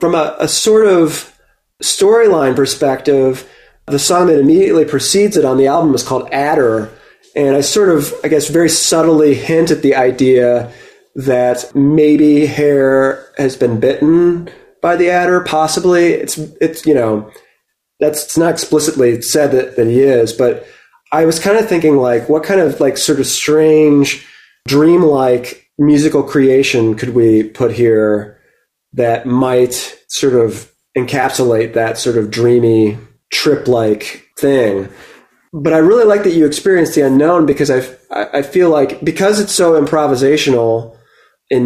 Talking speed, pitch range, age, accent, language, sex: 150 wpm, 120-155 Hz, 30-49, American, English, male